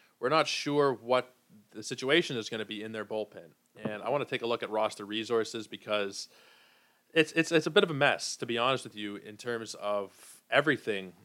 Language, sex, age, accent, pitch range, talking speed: English, male, 20-39, American, 110-140 Hz, 220 wpm